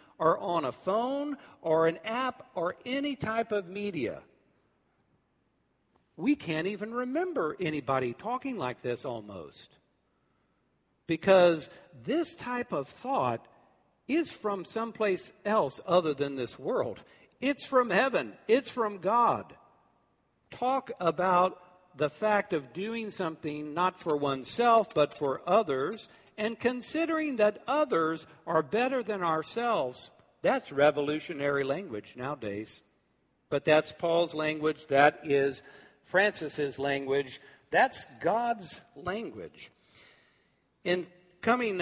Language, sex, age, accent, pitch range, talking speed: English, male, 60-79, American, 150-230 Hz, 110 wpm